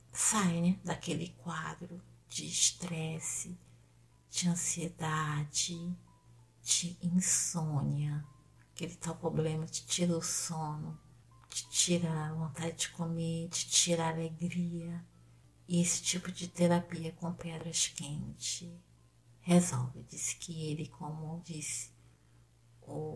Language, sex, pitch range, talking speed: Portuguese, female, 125-175 Hz, 110 wpm